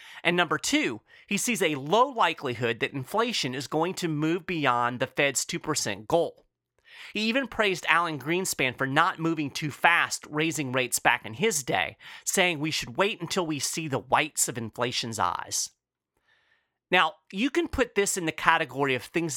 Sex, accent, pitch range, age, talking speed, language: male, American, 140-200 Hz, 30-49, 175 wpm, English